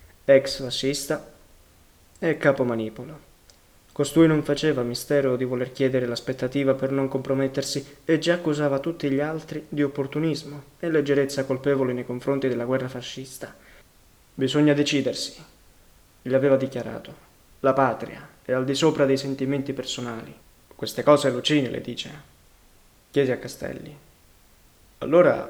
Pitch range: 130-150 Hz